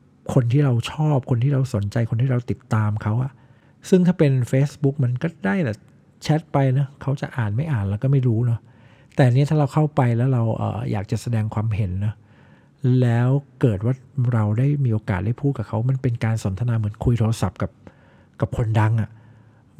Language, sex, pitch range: Thai, male, 110-135 Hz